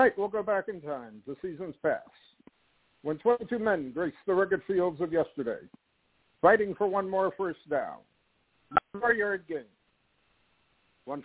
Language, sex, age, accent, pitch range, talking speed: English, male, 60-79, American, 175-245 Hz, 150 wpm